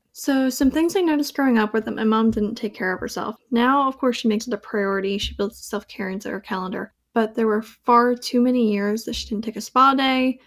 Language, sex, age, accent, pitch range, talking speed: English, female, 10-29, American, 215-260 Hz, 250 wpm